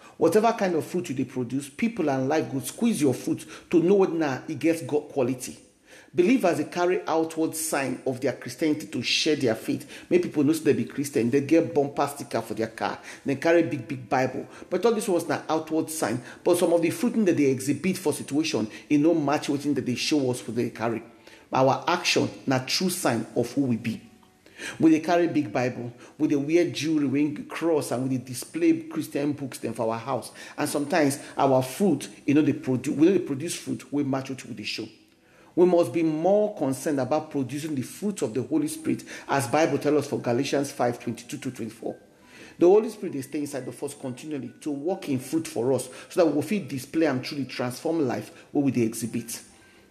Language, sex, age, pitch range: English, male, 50-69, 130-165 Hz